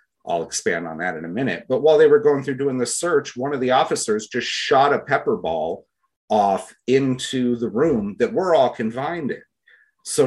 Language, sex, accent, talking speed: English, male, American, 205 wpm